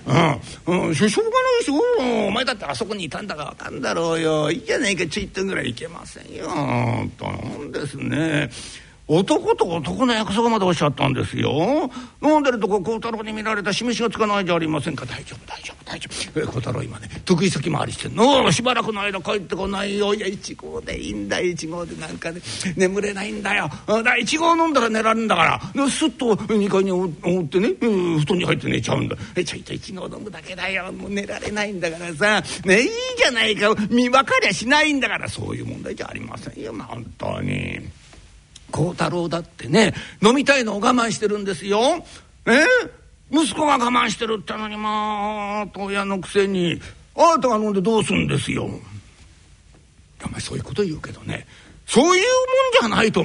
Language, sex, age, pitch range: Japanese, male, 60-79, 175-235 Hz